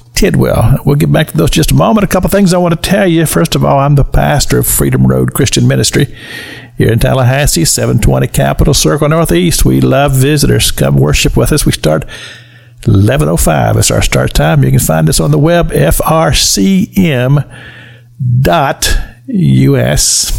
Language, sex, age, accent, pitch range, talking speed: English, male, 60-79, American, 115-150 Hz, 170 wpm